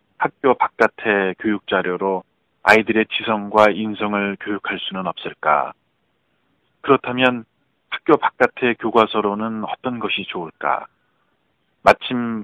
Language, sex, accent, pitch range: Korean, male, native, 100-115 Hz